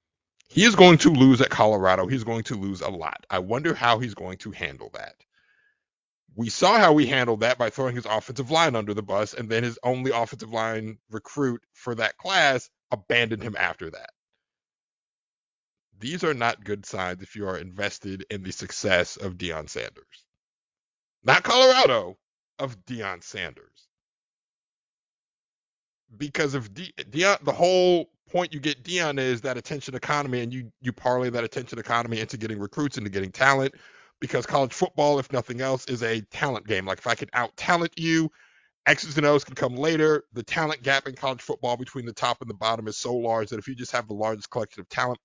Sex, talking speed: male, 190 wpm